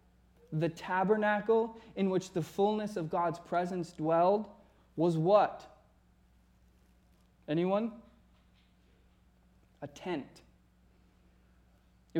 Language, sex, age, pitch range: English, male, 20-39, 155-215 Hz